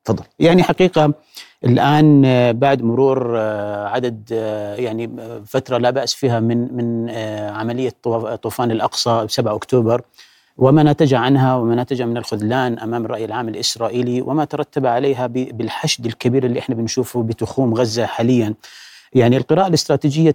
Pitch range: 115-140 Hz